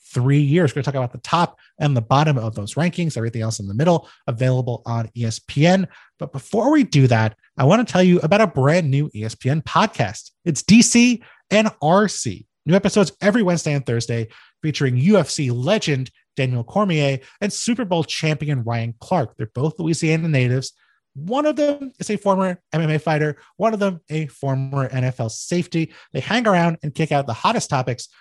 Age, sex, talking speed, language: 30-49, male, 185 wpm, English